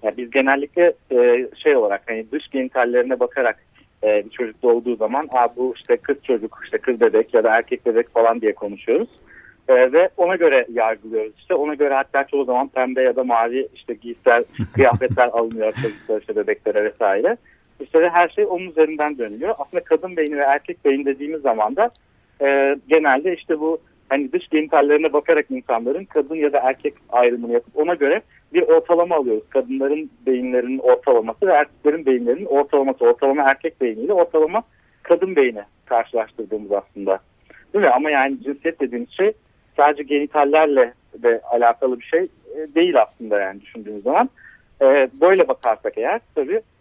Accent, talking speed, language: native, 165 wpm, Turkish